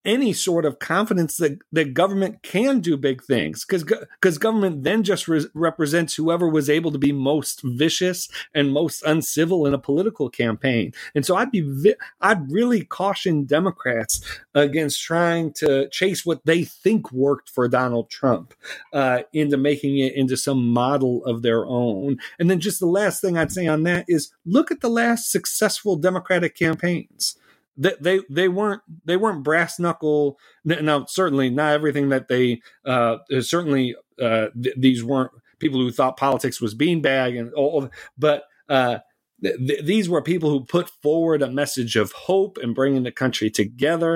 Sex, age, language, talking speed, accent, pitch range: male, 40-59, English, 170 wpm, American, 130-175 Hz